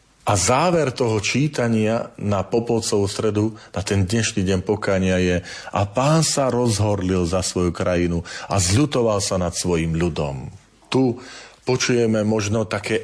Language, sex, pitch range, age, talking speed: Slovak, male, 95-125 Hz, 40-59, 140 wpm